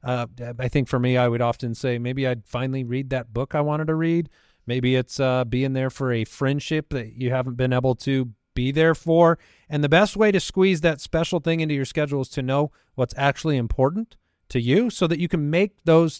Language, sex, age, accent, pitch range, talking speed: English, male, 40-59, American, 125-160 Hz, 230 wpm